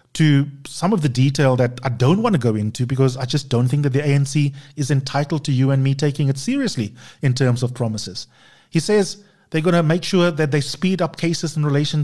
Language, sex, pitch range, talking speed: English, male, 130-160 Hz, 235 wpm